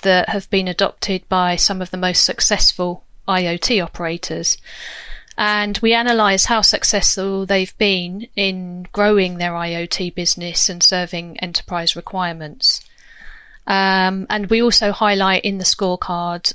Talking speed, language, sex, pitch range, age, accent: 130 wpm, English, female, 180-205 Hz, 40-59, British